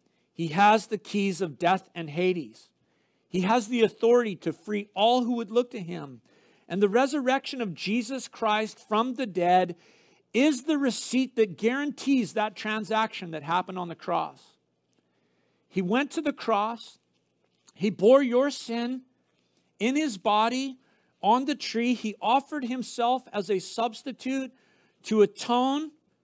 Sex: male